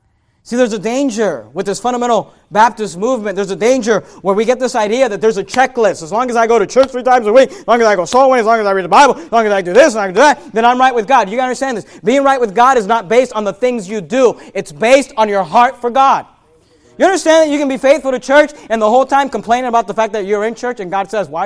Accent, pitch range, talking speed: American, 205-290 Hz, 305 wpm